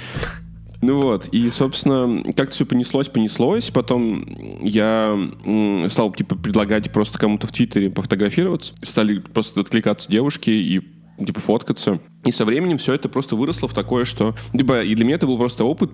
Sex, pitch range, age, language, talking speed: male, 105-135 Hz, 20-39, Russian, 160 wpm